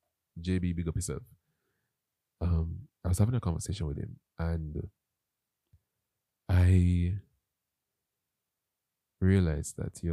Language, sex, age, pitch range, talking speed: English, male, 20-39, 80-105 Hz, 100 wpm